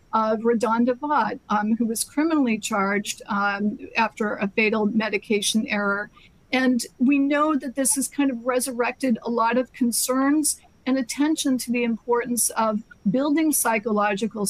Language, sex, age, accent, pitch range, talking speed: English, female, 50-69, American, 210-265 Hz, 145 wpm